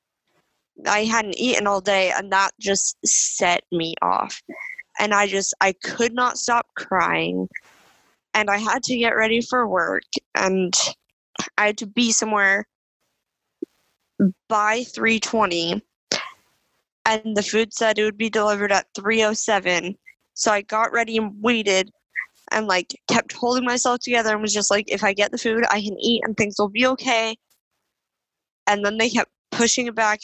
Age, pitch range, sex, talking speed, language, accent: 20-39, 205-245 Hz, female, 165 wpm, English, American